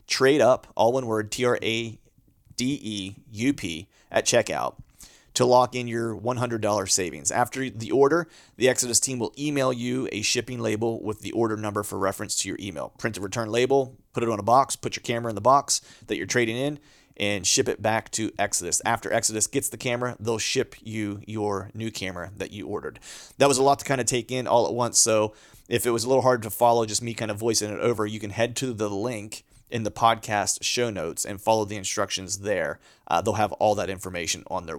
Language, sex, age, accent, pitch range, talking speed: English, male, 30-49, American, 105-125 Hz, 230 wpm